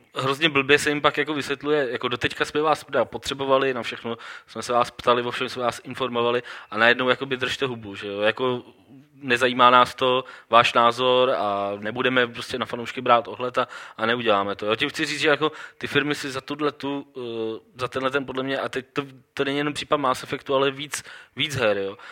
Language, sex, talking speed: Czech, male, 205 wpm